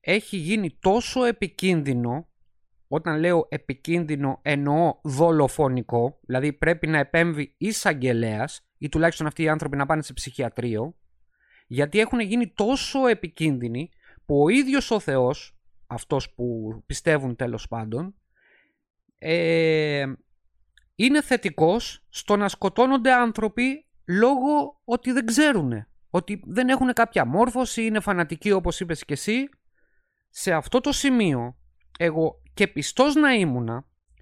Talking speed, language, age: 125 wpm, Greek, 30-49